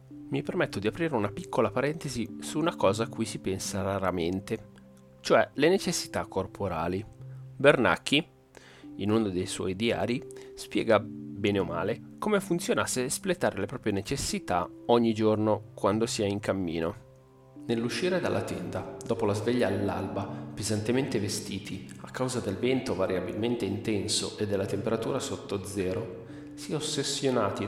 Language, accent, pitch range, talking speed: Italian, native, 95-125 Hz, 140 wpm